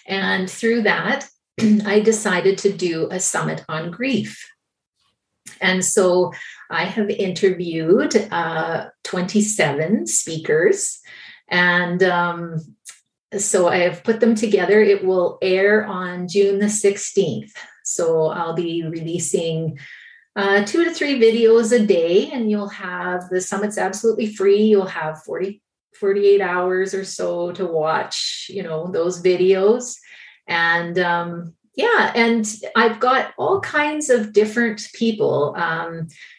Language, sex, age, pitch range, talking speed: English, female, 30-49, 180-230 Hz, 125 wpm